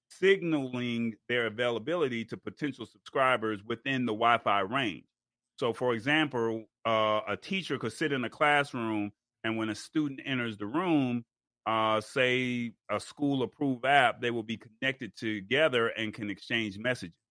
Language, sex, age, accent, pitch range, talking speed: English, male, 30-49, American, 110-135 Hz, 145 wpm